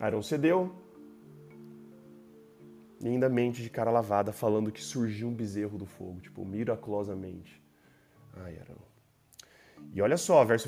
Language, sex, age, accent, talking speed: Portuguese, male, 20-39, Brazilian, 135 wpm